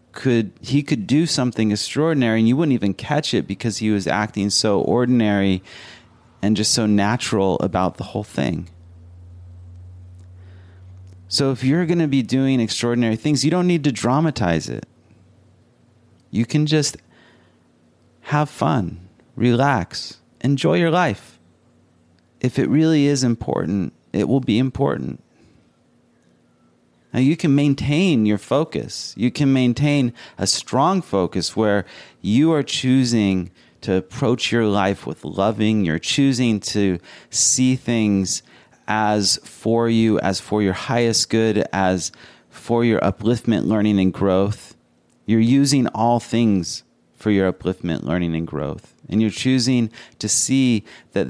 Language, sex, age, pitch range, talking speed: English, male, 30-49, 95-130 Hz, 135 wpm